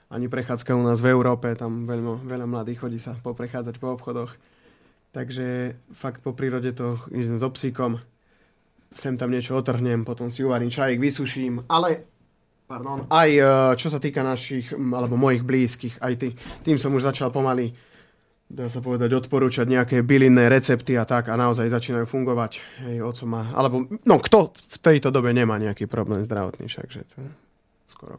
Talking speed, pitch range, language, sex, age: 170 wpm, 120-140 Hz, Slovak, male, 30-49